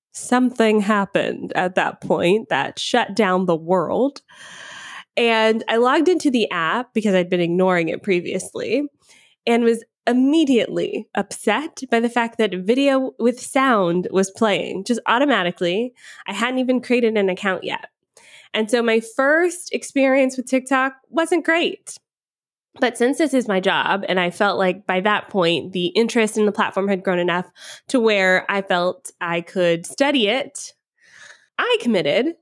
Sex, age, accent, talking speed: female, 20-39, American, 155 wpm